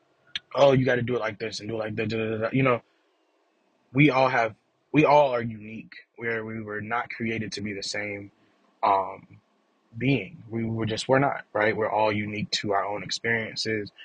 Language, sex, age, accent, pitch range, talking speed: English, male, 20-39, American, 105-125 Hz, 195 wpm